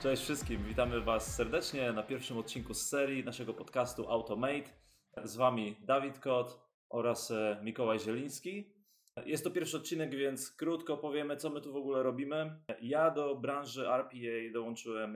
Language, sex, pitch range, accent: Polish, male, 115-140 Hz, native